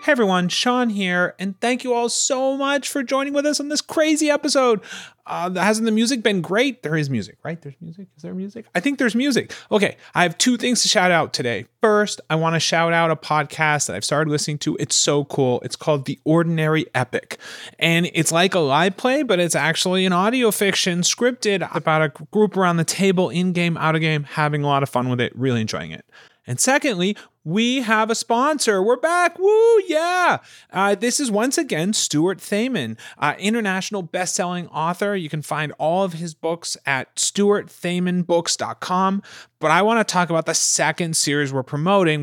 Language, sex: English, male